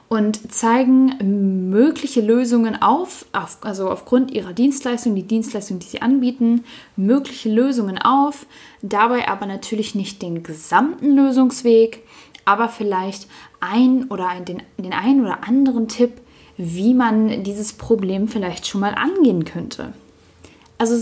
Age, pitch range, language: 10-29, 200-255 Hz, German